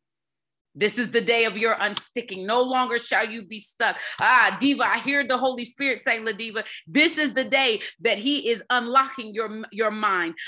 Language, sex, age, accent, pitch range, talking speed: English, female, 30-49, American, 230-295 Hz, 195 wpm